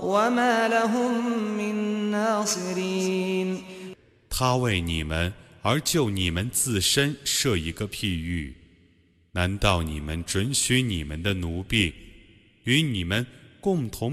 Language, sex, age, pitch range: Arabic, male, 30-49, 85-125 Hz